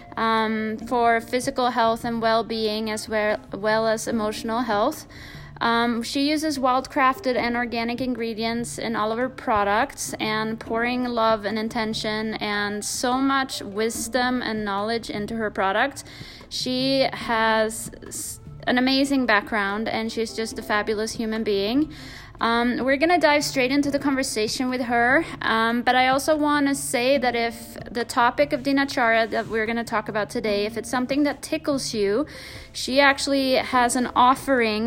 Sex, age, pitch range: female, 20-39, 220-260 Hz